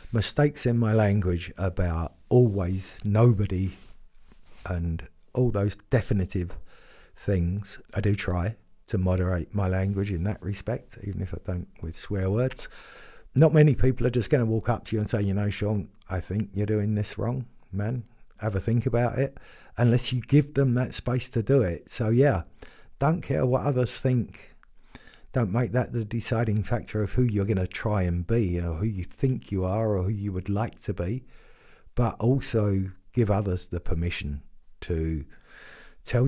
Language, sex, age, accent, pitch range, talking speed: English, male, 50-69, British, 90-120 Hz, 180 wpm